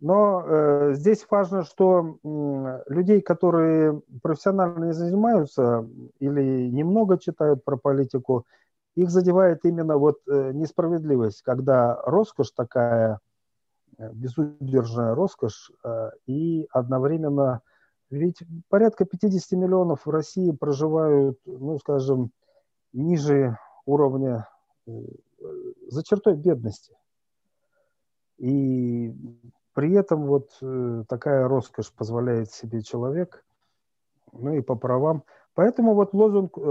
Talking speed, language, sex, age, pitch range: 90 wpm, English, male, 40-59, 125-170 Hz